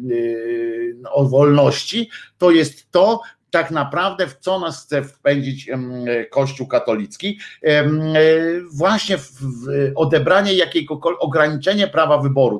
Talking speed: 100 wpm